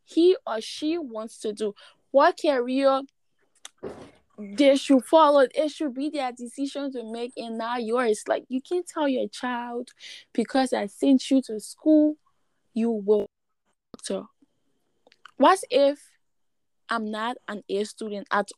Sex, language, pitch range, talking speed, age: female, English, 220-280 Hz, 140 wpm, 10-29